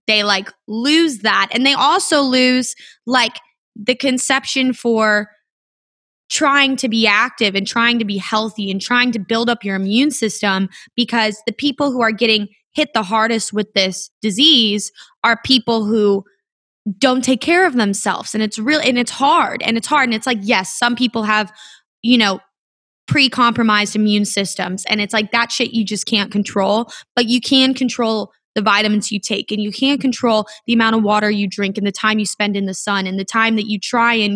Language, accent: English, American